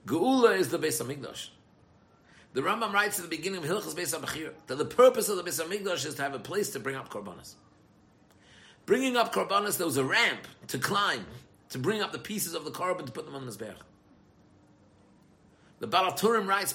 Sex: male